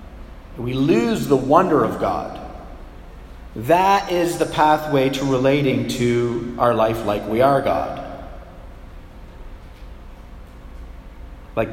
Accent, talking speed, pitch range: American, 100 wpm, 90-135 Hz